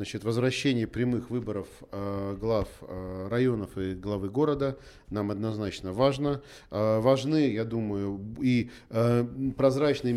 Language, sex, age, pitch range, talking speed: Russian, male, 40-59, 105-135 Hz, 125 wpm